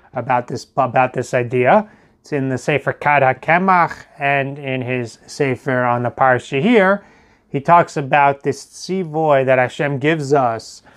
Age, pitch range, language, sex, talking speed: 30-49, 130-175 Hz, English, male, 155 wpm